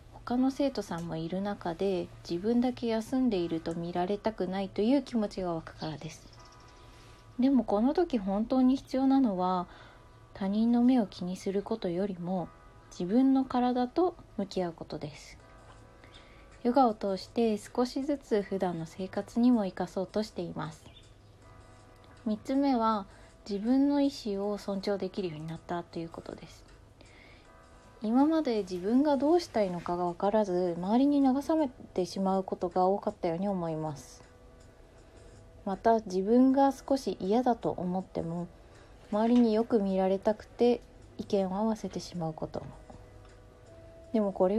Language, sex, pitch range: Japanese, female, 175-240 Hz